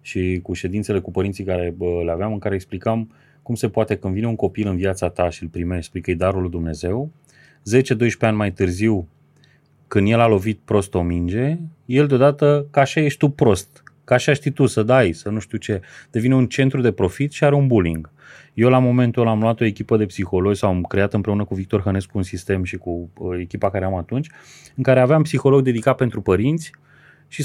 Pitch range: 95-135 Hz